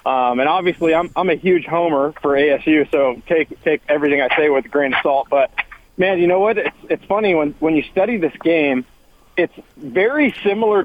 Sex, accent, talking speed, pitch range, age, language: male, American, 210 wpm, 155-185 Hz, 40-59, English